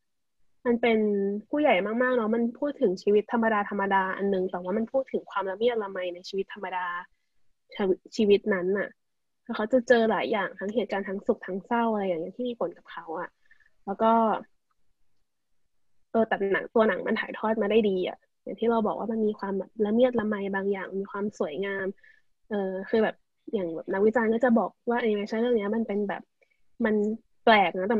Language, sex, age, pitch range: Thai, female, 20-39, 195-235 Hz